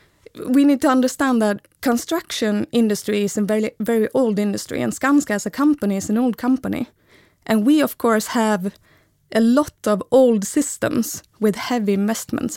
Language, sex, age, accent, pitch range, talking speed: English, female, 20-39, Swedish, 210-260 Hz, 165 wpm